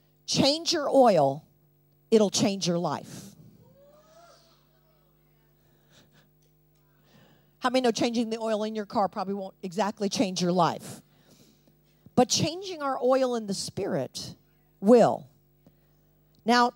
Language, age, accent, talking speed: English, 50-69, American, 110 wpm